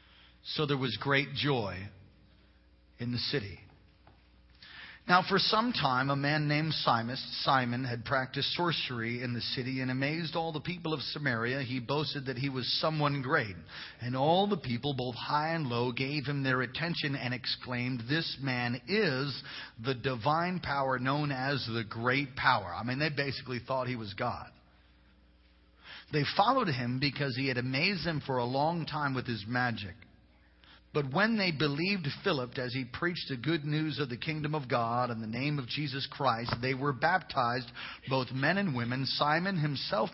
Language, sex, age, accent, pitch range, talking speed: English, male, 40-59, American, 125-155 Hz, 170 wpm